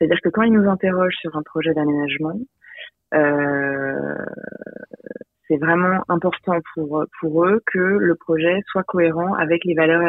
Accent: French